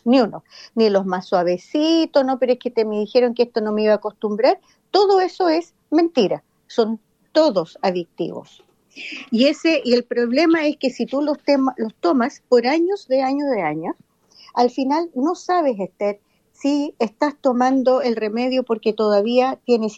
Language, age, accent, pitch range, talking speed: Spanish, 50-69, American, 225-280 Hz, 175 wpm